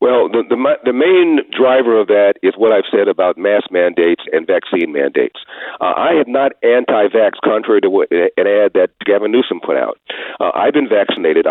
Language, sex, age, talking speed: English, male, 50-69, 195 wpm